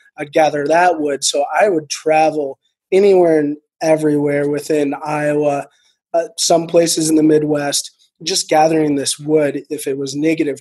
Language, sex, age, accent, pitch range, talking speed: English, male, 20-39, American, 145-170 Hz, 155 wpm